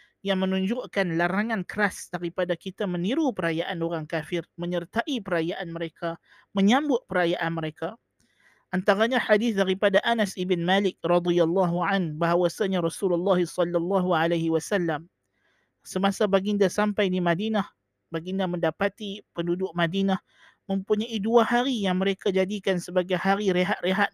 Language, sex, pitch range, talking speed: Malay, male, 175-205 Hz, 115 wpm